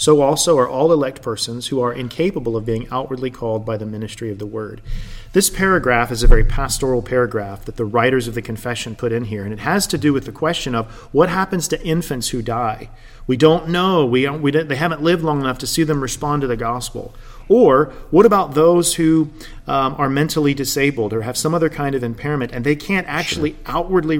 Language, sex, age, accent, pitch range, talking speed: English, male, 40-59, American, 120-155 Hz, 225 wpm